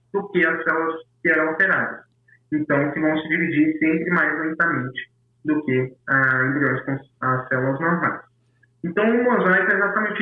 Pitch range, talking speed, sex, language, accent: 135-190 Hz, 165 wpm, male, Portuguese, Brazilian